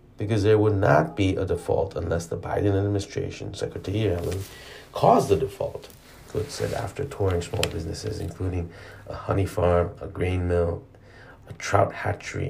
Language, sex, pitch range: Korean, male, 95-115 Hz